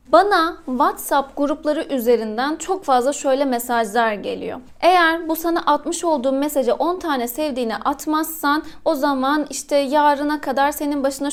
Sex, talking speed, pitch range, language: female, 140 wpm, 265-320 Hz, Turkish